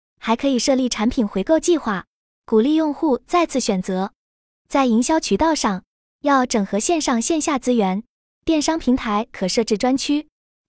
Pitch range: 220-300 Hz